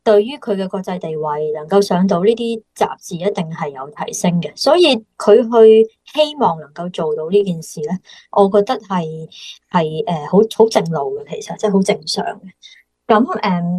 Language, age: Chinese, 30-49